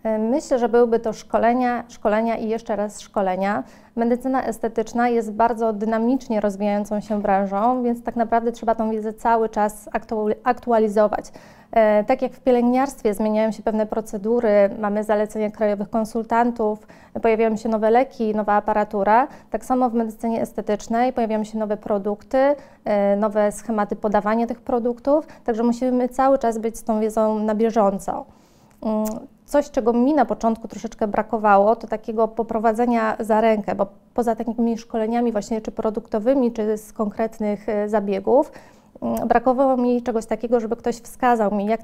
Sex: female